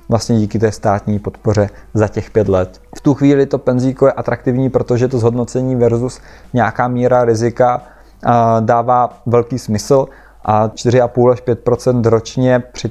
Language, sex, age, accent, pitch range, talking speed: Czech, male, 20-39, native, 115-125 Hz, 150 wpm